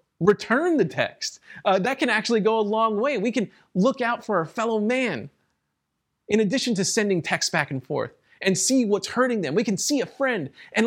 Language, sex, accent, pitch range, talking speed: English, male, American, 175-230 Hz, 210 wpm